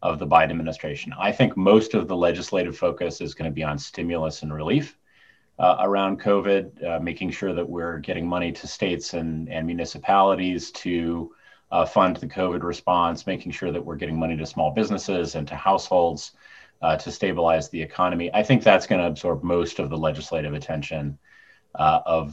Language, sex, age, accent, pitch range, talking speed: English, male, 30-49, American, 80-95 Hz, 185 wpm